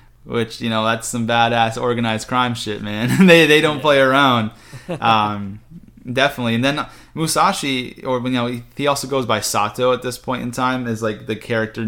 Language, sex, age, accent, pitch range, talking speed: English, male, 20-39, American, 100-125 Hz, 185 wpm